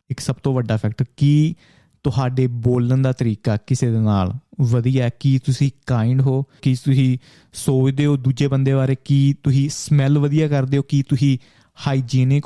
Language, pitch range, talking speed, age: Punjabi, 120-140 Hz, 165 wpm, 20-39